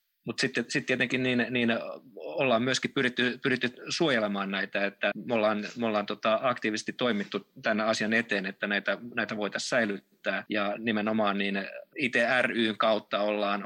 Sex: male